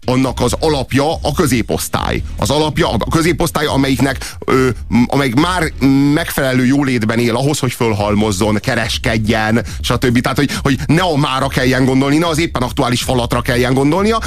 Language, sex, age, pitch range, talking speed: Hungarian, male, 30-49, 115-145 Hz, 150 wpm